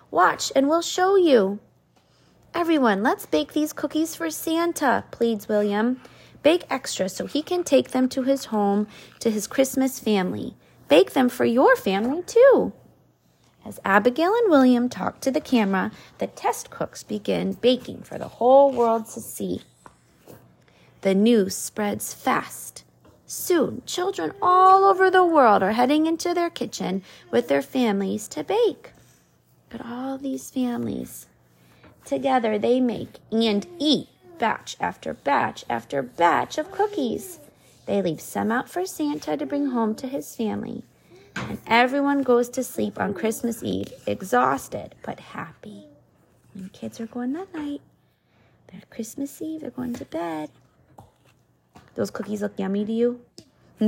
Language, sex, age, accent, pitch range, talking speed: English, female, 30-49, American, 210-300 Hz, 145 wpm